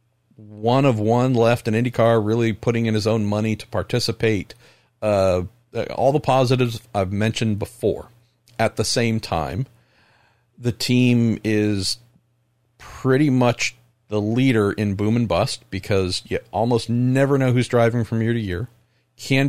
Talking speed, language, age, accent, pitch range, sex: 150 wpm, English, 50-69, American, 100-120 Hz, male